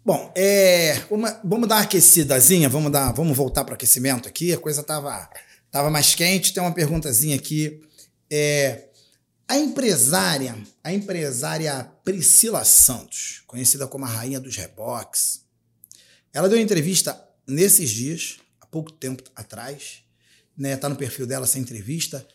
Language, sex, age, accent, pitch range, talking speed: Portuguese, male, 40-59, Brazilian, 140-195 Hz, 150 wpm